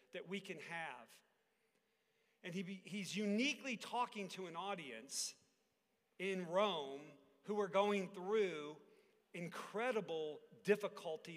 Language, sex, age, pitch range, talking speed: English, male, 40-59, 190-235 Hz, 105 wpm